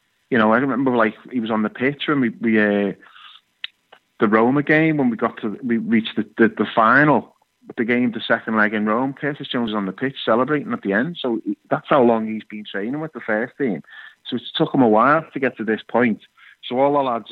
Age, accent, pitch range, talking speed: 30-49, British, 105-120 Hz, 245 wpm